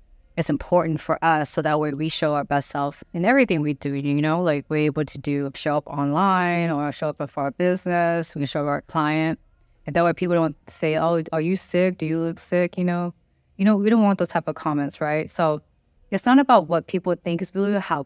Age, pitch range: 20-39, 150-185 Hz